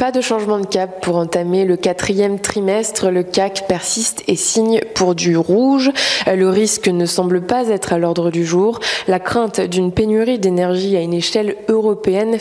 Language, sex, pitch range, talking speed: French, female, 180-220 Hz, 180 wpm